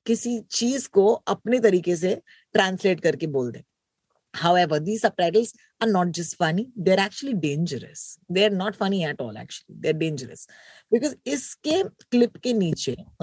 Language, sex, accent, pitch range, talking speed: Hindi, female, native, 170-240 Hz, 60 wpm